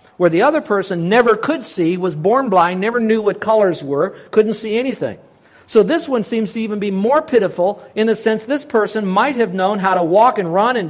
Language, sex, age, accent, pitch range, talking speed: English, male, 60-79, American, 190-245 Hz, 225 wpm